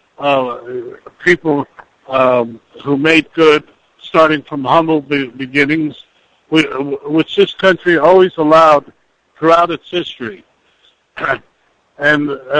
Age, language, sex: 60-79, English, male